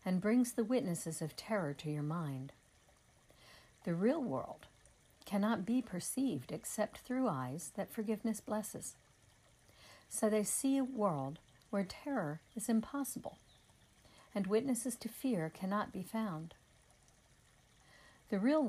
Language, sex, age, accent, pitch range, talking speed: English, female, 60-79, American, 150-230 Hz, 125 wpm